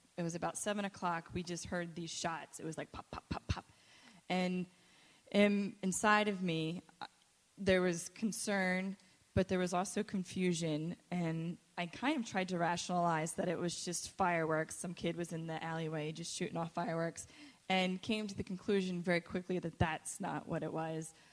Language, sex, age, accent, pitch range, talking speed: English, female, 20-39, American, 170-200 Hz, 185 wpm